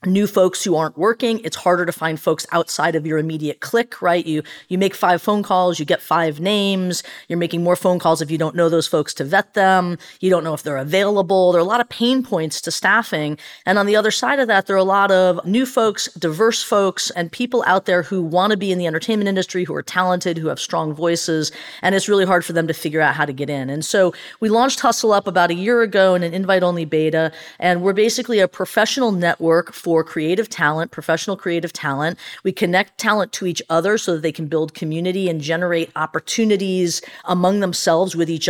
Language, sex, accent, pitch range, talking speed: English, female, American, 165-200 Hz, 230 wpm